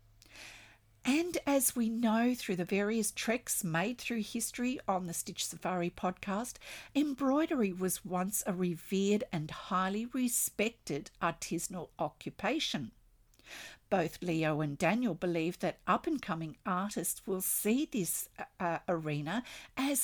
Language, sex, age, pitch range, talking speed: English, female, 50-69, 165-225 Hz, 120 wpm